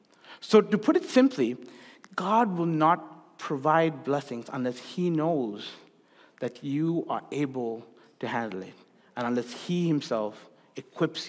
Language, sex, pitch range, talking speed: English, male, 130-170 Hz, 135 wpm